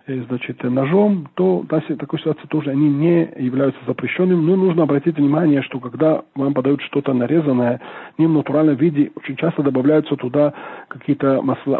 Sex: male